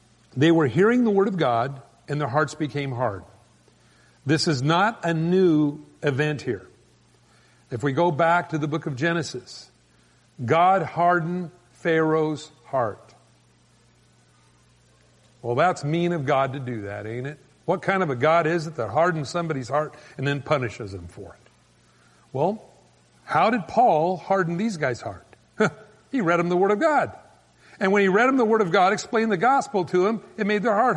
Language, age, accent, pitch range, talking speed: English, 50-69, American, 125-200 Hz, 180 wpm